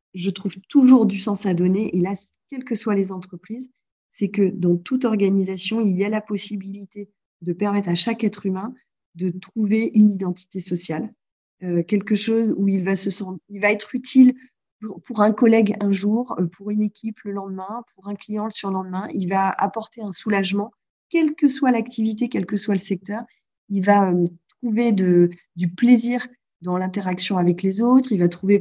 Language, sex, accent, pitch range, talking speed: French, female, French, 180-215 Hz, 180 wpm